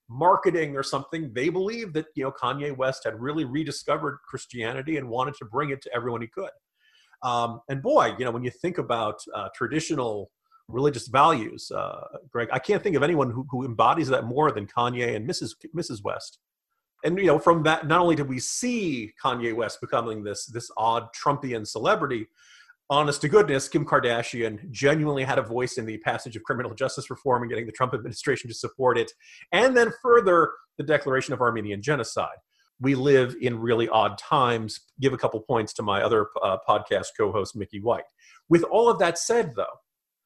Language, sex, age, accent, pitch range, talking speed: English, male, 40-59, American, 120-155 Hz, 190 wpm